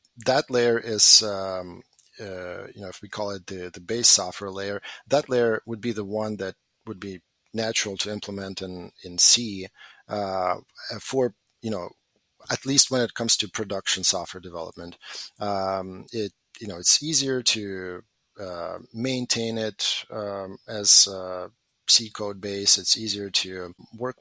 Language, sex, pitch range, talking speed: English, male, 100-120 Hz, 160 wpm